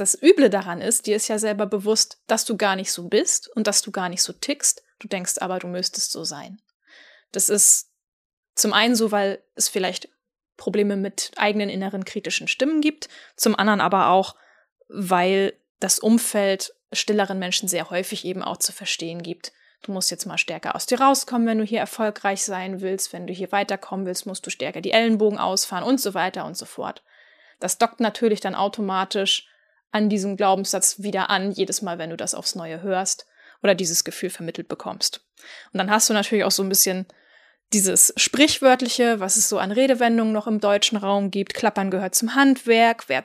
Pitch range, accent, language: 195-240 Hz, German, German